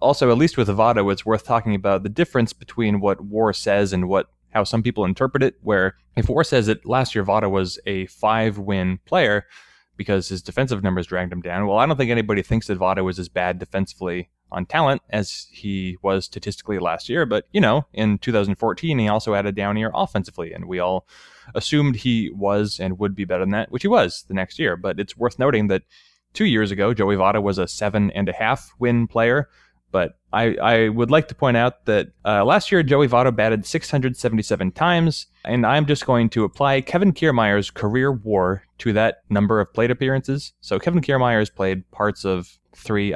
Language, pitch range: English, 100-125 Hz